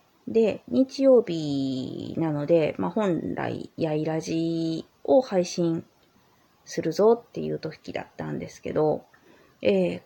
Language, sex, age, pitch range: Japanese, female, 30-49, 160-225 Hz